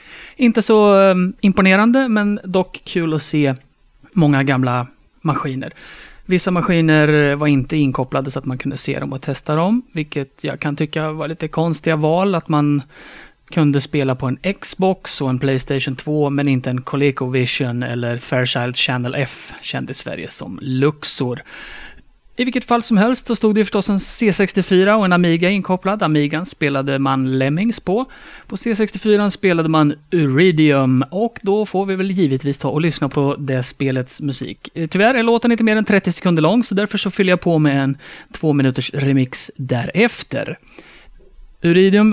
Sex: male